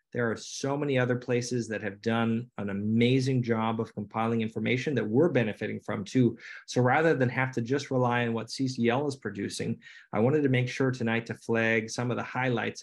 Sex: male